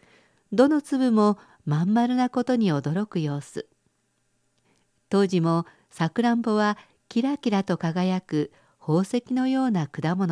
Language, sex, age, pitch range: Japanese, female, 50-69, 165-235 Hz